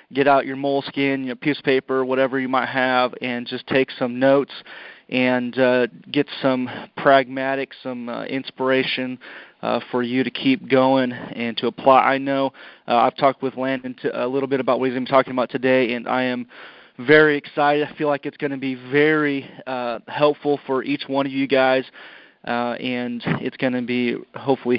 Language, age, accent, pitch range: English, 30-49, American, 130-145 Hz